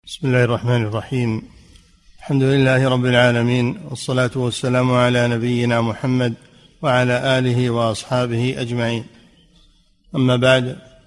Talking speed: 105 wpm